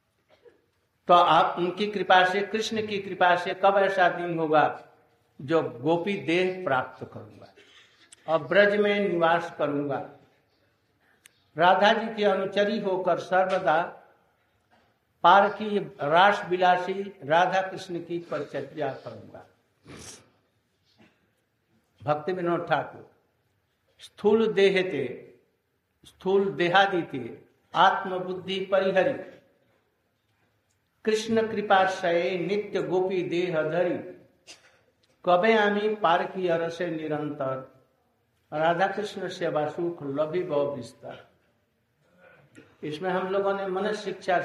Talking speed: 85 wpm